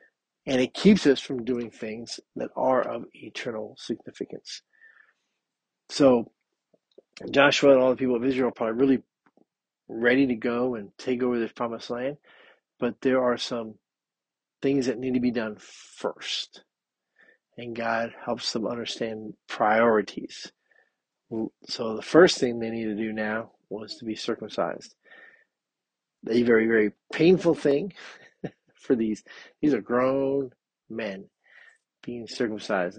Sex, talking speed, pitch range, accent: male, 135 wpm, 110-130 Hz, American